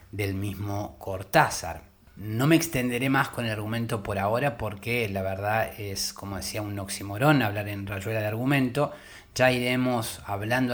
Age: 30-49